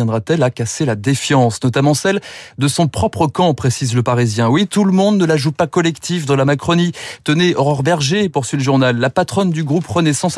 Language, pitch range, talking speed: French, 130-175 Hz, 215 wpm